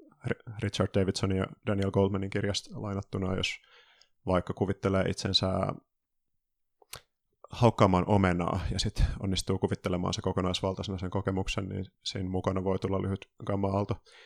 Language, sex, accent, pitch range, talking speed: Finnish, male, native, 95-105 Hz, 120 wpm